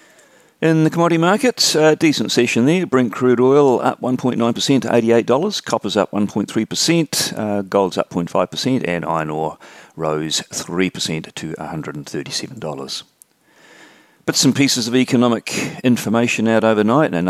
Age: 40-59